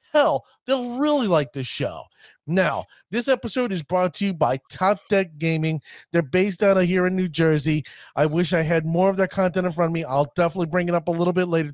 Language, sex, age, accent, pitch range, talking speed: English, male, 30-49, American, 150-195 Hz, 235 wpm